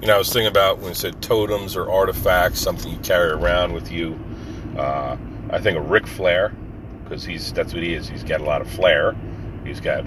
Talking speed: 220 wpm